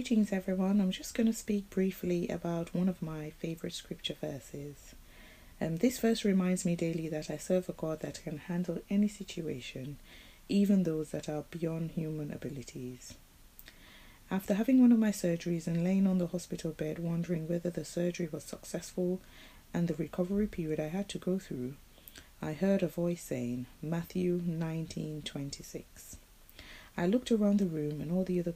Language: English